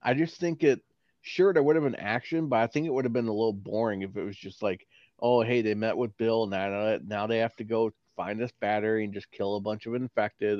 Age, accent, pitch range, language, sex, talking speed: 30-49, American, 105-125 Hz, English, male, 265 wpm